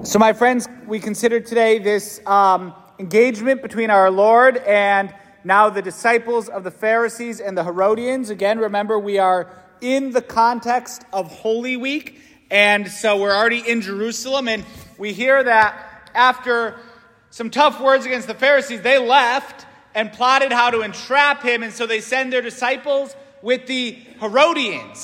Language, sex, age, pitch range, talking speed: English, male, 30-49, 220-275 Hz, 160 wpm